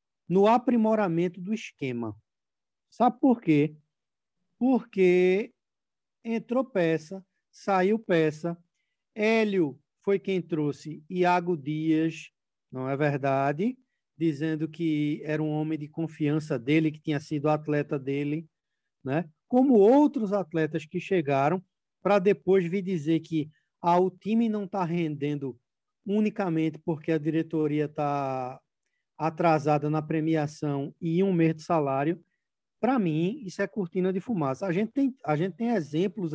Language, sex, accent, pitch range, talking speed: Portuguese, male, Brazilian, 150-195 Hz, 130 wpm